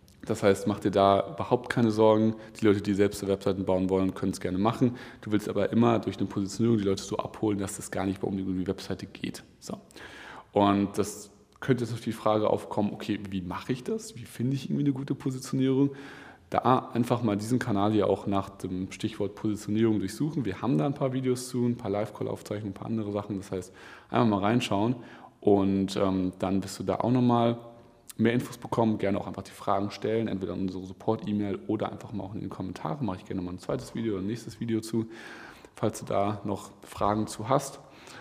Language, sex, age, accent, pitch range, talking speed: German, male, 30-49, German, 100-115 Hz, 215 wpm